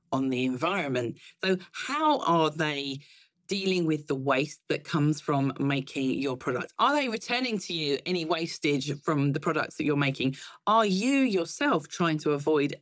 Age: 40-59